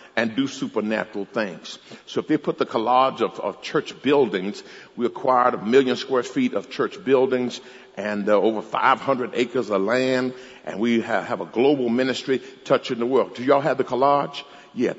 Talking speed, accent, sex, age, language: 180 wpm, American, male, 60-79, English